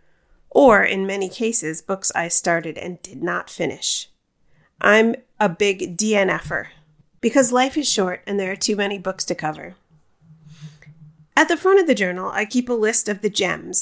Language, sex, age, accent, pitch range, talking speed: English, female, 40-59, American, 170-225 Hz, 175 wpm